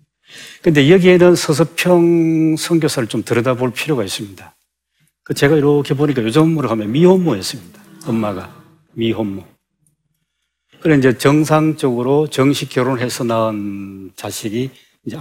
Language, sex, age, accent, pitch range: Korean, male, 40-59, native, 115-165 Hz